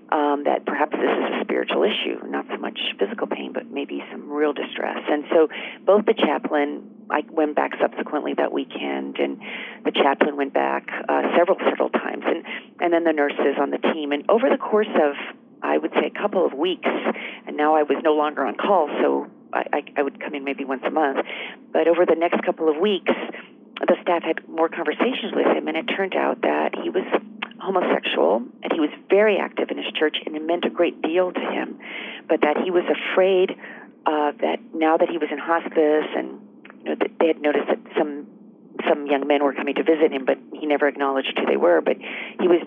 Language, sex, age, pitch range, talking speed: English, female, 40-59, 135-165 Hz, 220 wpm